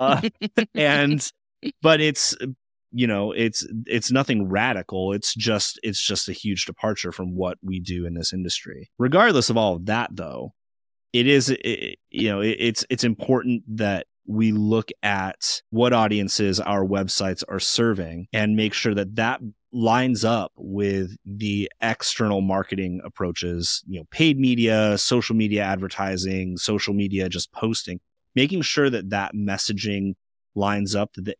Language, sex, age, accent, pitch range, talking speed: English, male, 30-49, American, 90-110 Hz, 155 wpm